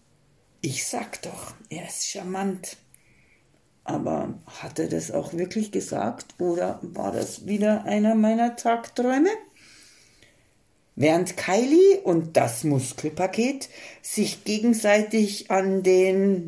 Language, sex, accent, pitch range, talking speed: German, female, German, 185-245 Hz, 105 wpm